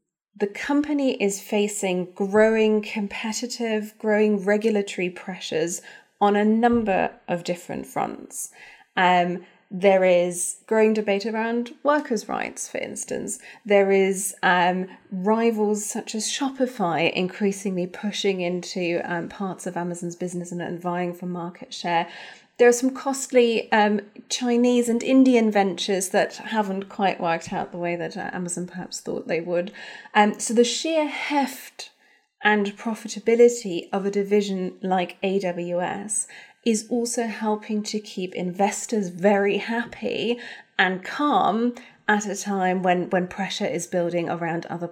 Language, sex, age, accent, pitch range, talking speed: English, female, 30-49, British, 180-230 Hz, 135 wpm